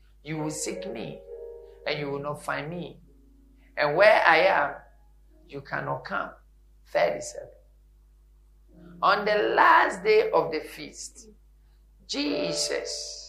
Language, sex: English, male